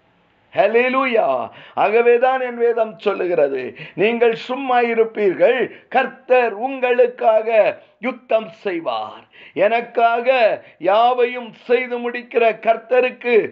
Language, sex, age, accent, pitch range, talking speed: Tamil, male, 50-69, native, 235-270 Hz, 70 wpm